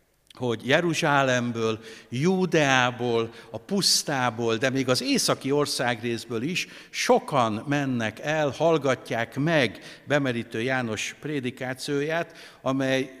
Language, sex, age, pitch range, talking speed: Hungarian, male, 60-79, 125-165 Hz, 95 wpm